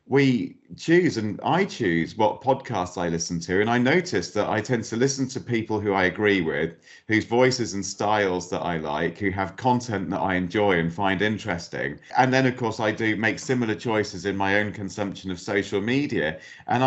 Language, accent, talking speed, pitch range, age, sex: English, British, 205 wpm, 95-120 Hz, 40-59, male